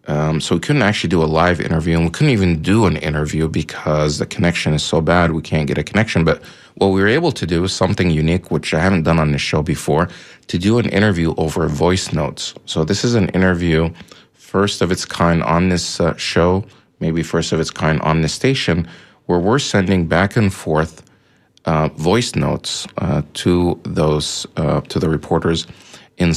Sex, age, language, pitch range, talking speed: male, 40-59, English, 80-95 Hz, 205 wpm